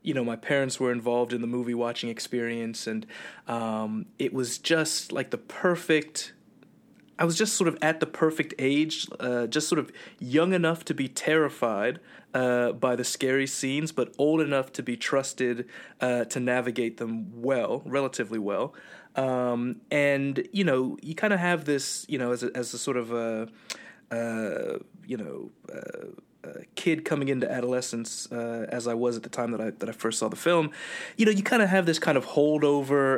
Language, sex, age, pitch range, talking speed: English, male, 20-39, 120-155 Hz, 185 wpm